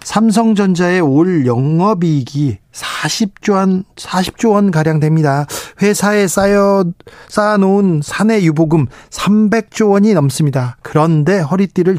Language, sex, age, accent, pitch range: Korean, male, 40-59, native, 135-200 Hz